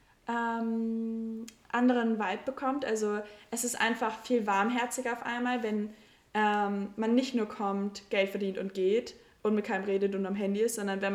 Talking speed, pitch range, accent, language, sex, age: 170 wpm, 200-230 Hz, German, German, female, 20-39